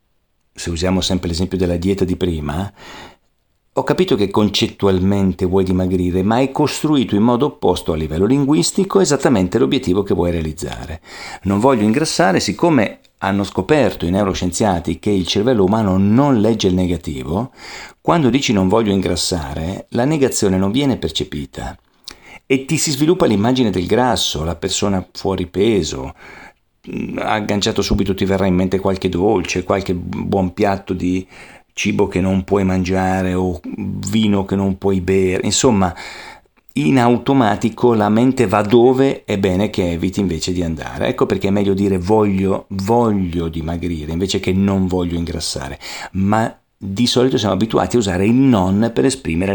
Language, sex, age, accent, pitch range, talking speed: Italian, male, 50-69, native, 90-110 Hz, 155 wpm